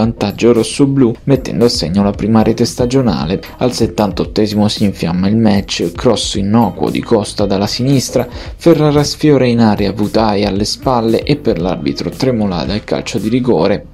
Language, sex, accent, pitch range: Italian, male, native, 105-130 Hz